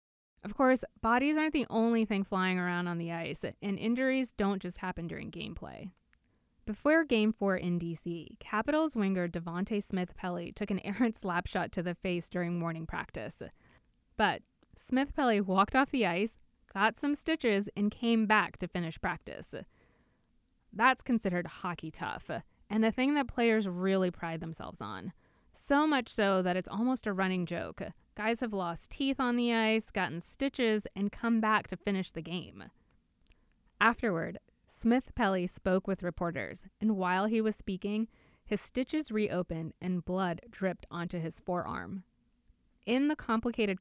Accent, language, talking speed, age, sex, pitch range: American, English, 155 wpm, 20-39, female, 175-225 Hz